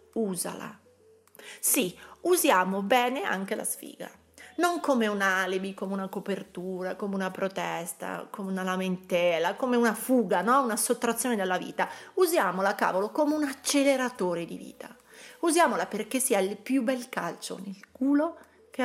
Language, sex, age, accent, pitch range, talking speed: Italian, female, 30-49, native, 185-245 Hz, 145 wpm